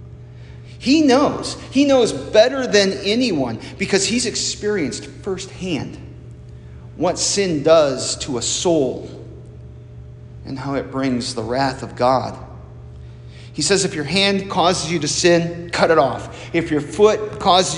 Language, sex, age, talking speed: English, male, 40-59, 140 wpm